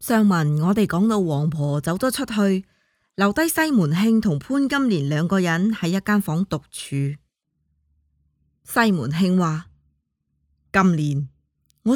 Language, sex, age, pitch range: Chinese, female, 20-39, 175-245 Hz